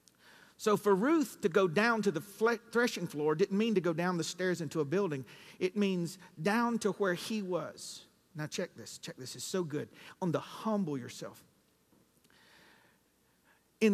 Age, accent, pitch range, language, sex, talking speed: 50-69, American, 150-200 Hz, English, male, 170 wpm